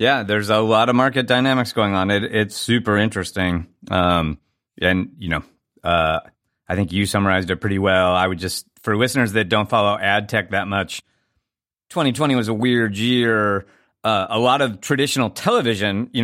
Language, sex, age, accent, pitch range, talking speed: English, male, 30-49, American, 95-115 Hz, 180 wpm